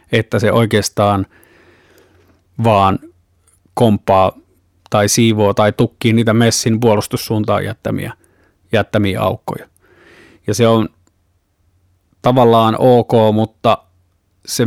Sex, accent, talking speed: male, native, 90 wpm